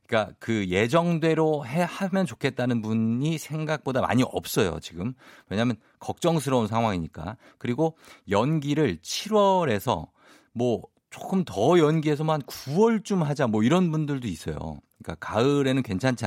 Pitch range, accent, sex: 100-150 Hz, native, male